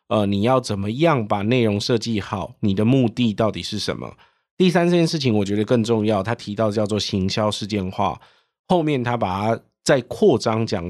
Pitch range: 100-120 Hz